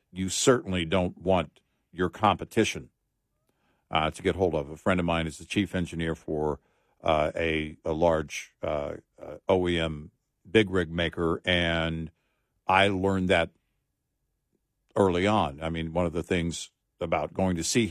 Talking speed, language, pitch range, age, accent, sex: 150 wpm, English, 85-125 Hz, 60-79, American, male